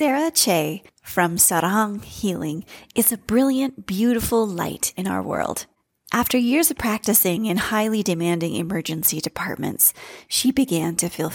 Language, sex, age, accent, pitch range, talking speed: English, female, 30-49, American, 170-235 Hz, 135 wpm